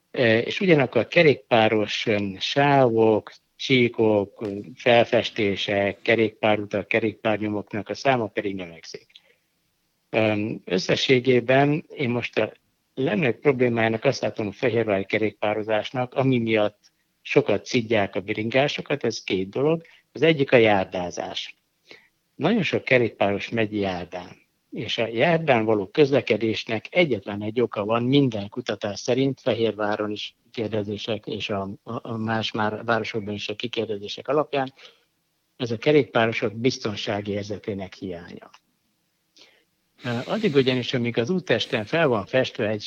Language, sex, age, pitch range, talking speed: Hungarian, male, 60-79, 105-130 Hz, 115 wpm